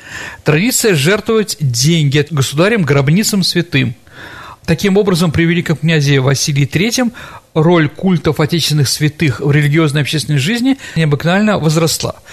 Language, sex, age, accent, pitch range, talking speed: Russian, male, 40-59, native, 145-180 Hz, 105 wpm